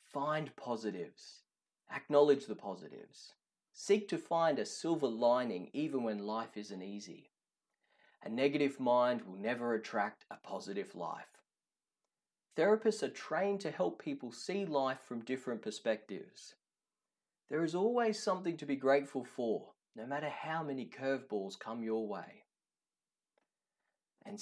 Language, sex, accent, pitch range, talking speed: English, male, Australian, 120-175 Hz, 130 wpm